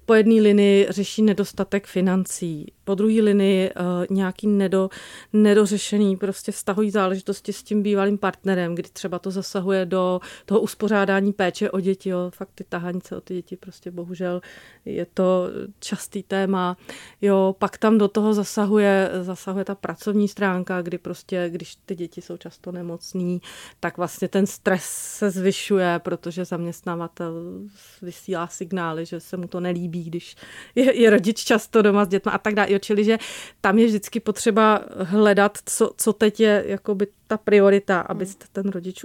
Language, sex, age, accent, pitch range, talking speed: Czech, female, 30-49, native, 180-210 Hz, 160 wpm